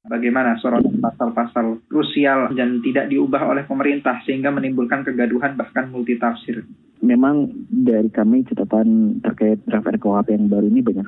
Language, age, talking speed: Indonesian, 20-39, 135 wpm